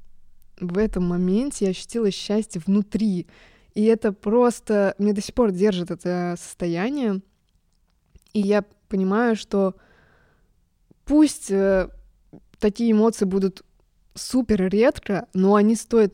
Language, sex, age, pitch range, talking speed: Russian, female, 20-39, 180-215 Hz, 110 wpm